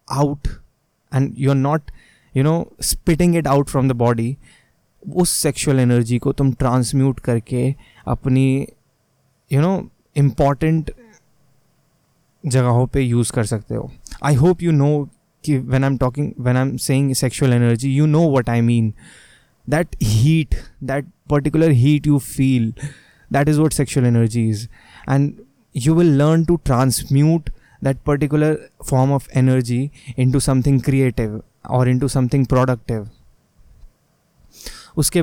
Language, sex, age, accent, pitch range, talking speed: Hindi, male, 20-39, native, 125-150 Hz, 135 wpm